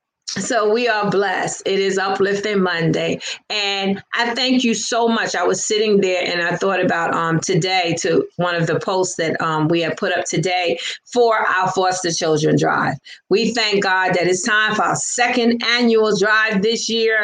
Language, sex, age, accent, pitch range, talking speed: English, female, 30-49, American, 165-215 Hz, 190 wpm